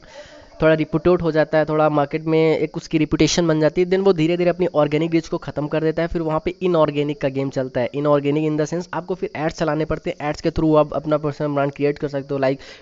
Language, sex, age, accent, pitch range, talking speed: Hindi, female, 20-39, native, 145-170 Hz, 260 wpm